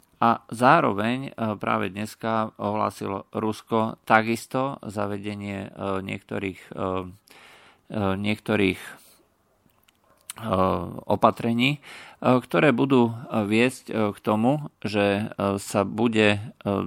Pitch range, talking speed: 100-115 Hz, 70 wpm